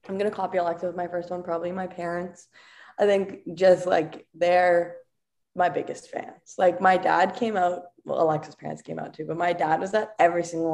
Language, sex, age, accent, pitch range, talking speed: English, female, 20-39, American, 155-185 Hz, 205 wpm